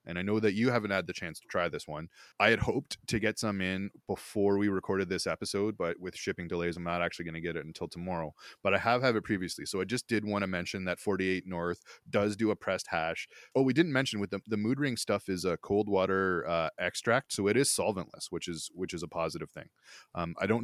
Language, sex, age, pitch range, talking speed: English, male, 20-39, 85-105 Hz, 260 wpm